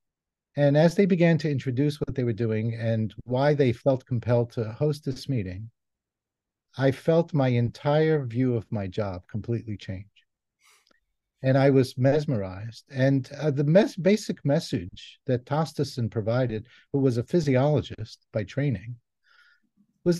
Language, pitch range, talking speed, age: English, 115-145 Hz, 145 wpm, 50-69